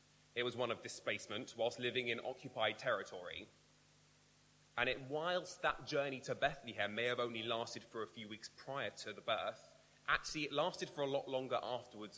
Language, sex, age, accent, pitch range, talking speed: English, male, 20-39, British, 110-135 Hz, 175 wpm